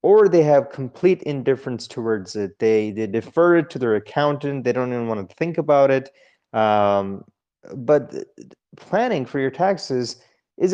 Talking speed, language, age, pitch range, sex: 160 wpm, English, 30-49, 130-170 Hz, male